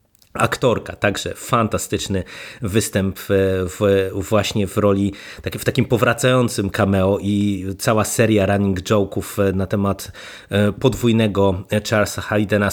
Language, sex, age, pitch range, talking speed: Polish, male, 30-49, 100-125 Hz, 100 wpm